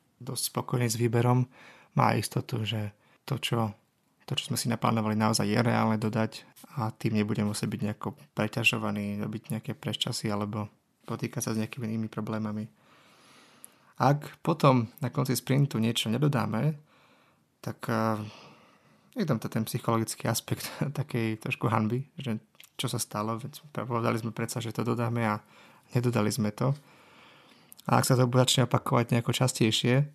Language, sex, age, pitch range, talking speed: Slovak, male, 20-39, 110-125 Hz, 150 wpm